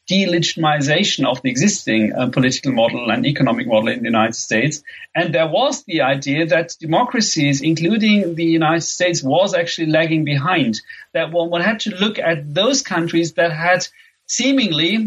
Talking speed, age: 165 wpm, 40-59